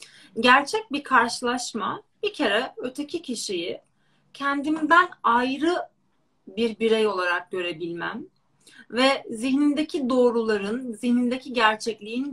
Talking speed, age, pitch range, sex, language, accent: 90 wpm, 30-49, 205-275 Hz, female, Turkish, native